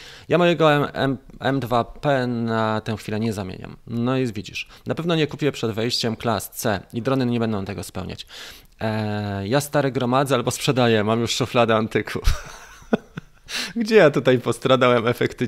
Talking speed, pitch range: 155 wpm, 105-140 Hz